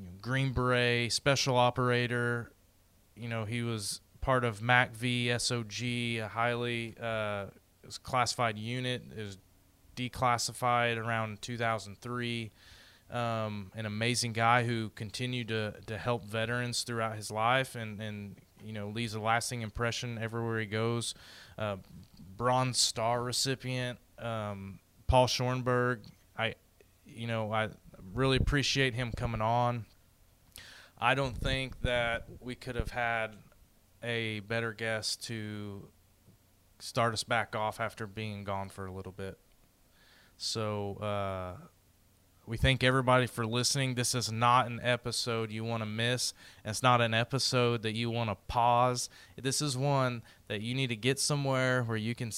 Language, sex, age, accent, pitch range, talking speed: English, male, 20-39, American, 105-125 Hz, 140 wpm